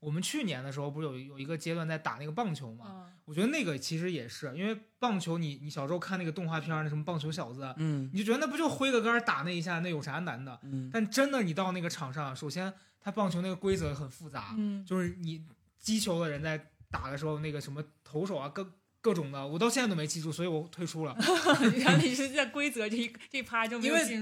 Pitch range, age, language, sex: 150-220 Hz, 20-39, Chinese, male